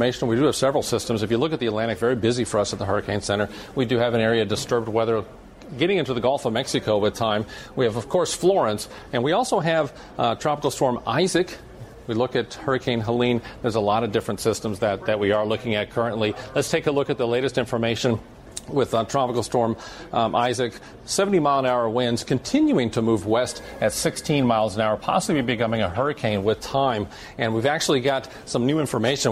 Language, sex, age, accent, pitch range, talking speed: English, male, 40-59, American, 110-130 Hz, 215 wpm